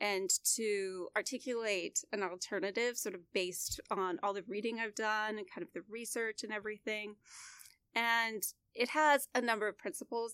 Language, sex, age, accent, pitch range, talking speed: English, female, 30-49, American, 190-235 Hz, 165 wpm